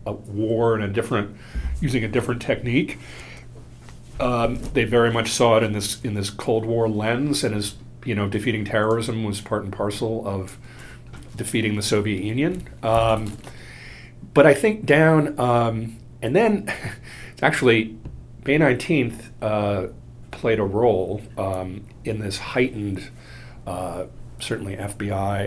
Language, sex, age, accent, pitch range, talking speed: English, male, 40-59, American, 105-120 Hz, 140 wpm